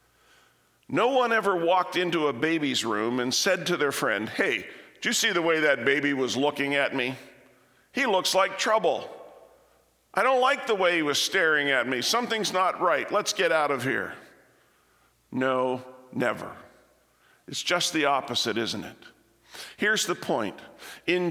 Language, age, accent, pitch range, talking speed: English, 50-69, American, 150-200 Hz, 165 wpm